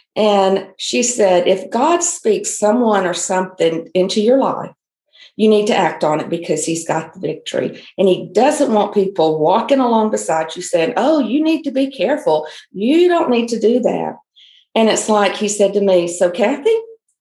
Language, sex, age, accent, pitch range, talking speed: English, female, 50-69, American, 180-225 Hz, 190 wpm